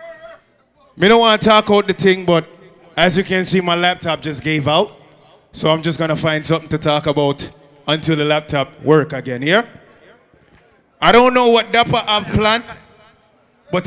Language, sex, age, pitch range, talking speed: English, male, 20-39, 165-245 Hz, 180 wpm